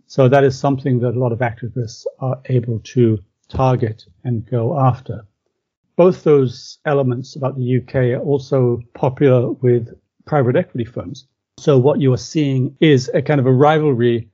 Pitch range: 115-135 Hz